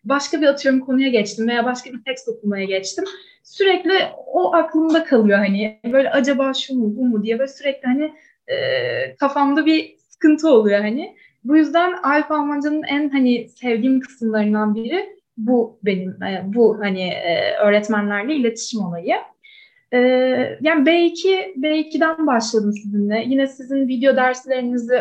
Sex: female